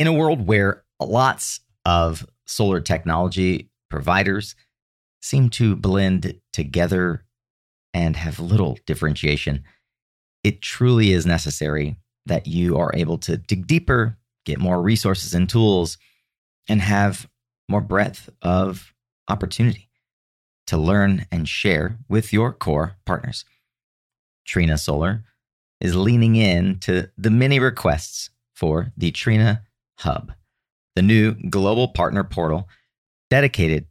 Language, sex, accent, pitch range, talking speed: English, male, American, 85-110 Hz, 115 wpm